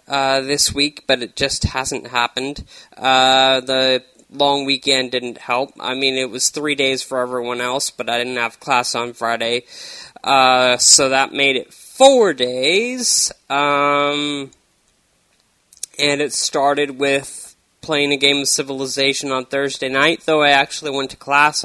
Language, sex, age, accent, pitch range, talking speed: English, male, 20-39, American, 130-150 Hz, 155 wpm